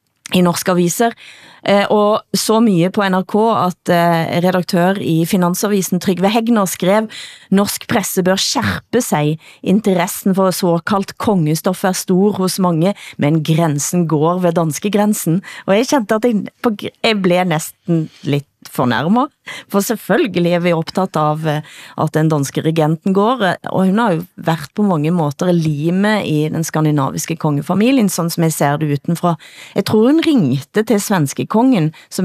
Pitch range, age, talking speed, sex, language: 160-200 Hz, 30-49, 155 wpm, female, Danish